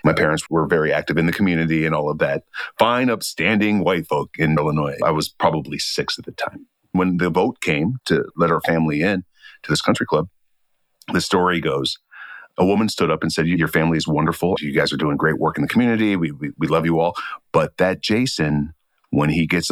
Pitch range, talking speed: 80-95 Hz, 220 wpm